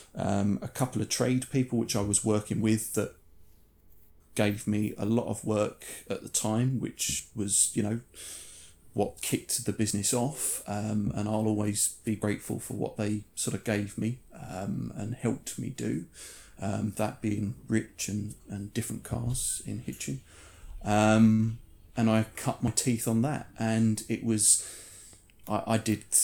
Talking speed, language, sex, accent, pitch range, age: 160 wpm, English, male, British, 105-120 Hz, 30-49